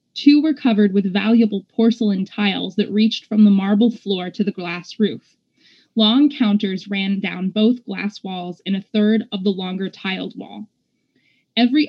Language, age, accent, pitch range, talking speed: English, 20-39, American, 195-235 Hz, 165 wpm